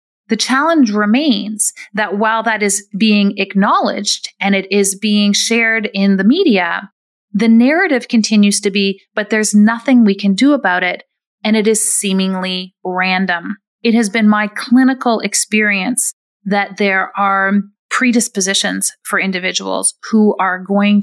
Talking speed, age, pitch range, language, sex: 145 wpm, 30-49, 190-225 Hz, English, female